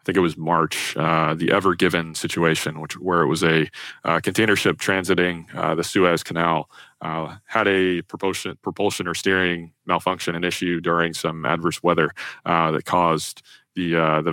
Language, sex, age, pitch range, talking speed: English, male, 20-39, 85-100 Hz, 180 wpm